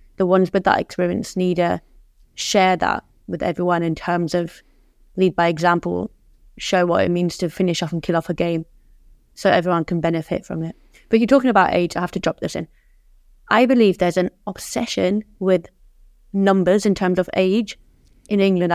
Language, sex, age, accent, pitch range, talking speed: English, female, 20-39, British, 175-210 Hz, 190 wpm